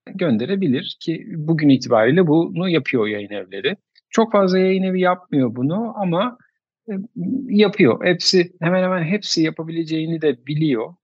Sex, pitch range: male, 150-200 Hz